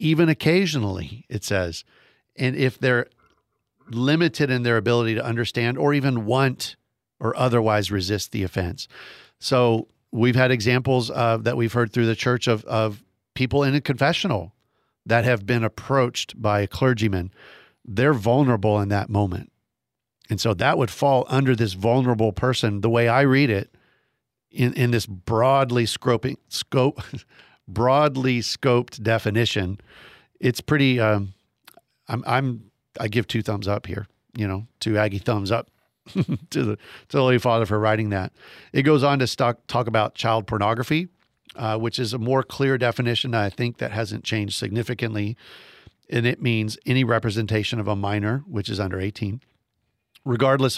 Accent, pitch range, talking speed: American, 110-130 Hz, 160 wpm